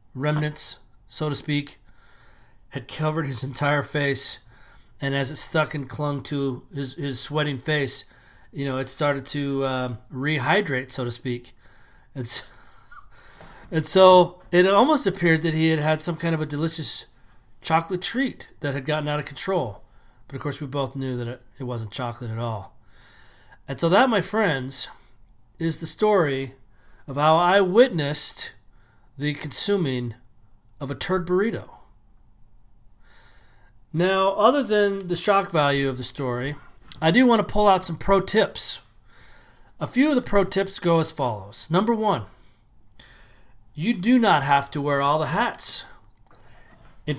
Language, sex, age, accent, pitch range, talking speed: English, male, 30-49, American, 125-175 Hz, 155 wpm